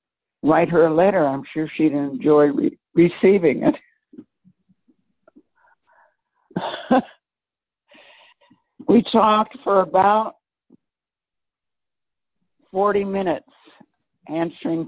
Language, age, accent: English, 60-79, American